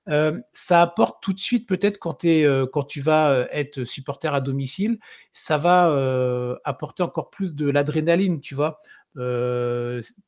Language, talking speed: French, 165 wpm